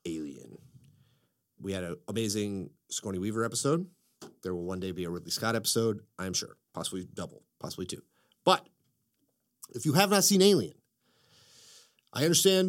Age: 30-49